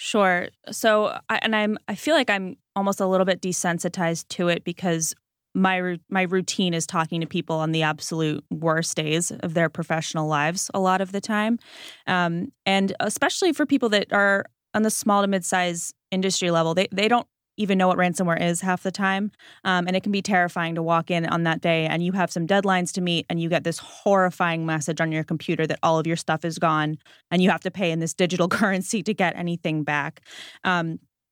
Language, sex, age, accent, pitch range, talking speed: English, female, 20-39, American, 165-195 Hz, 215 wpm